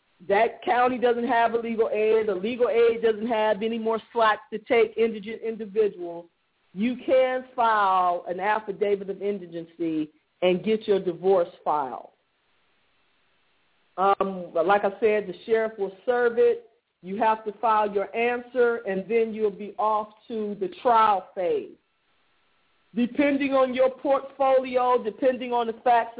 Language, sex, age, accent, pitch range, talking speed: English, female, 40-59, American, 205-235 Hz, 145 wpm